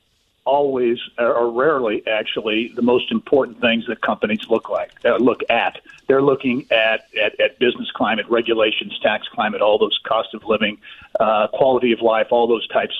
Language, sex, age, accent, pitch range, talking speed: English, male, 50-69, American, 120-200 Hz, 170 wpm